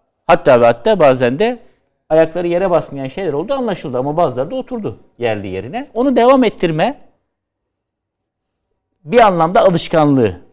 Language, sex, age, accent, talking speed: Turkish, male, 60-79, native, 125 wpm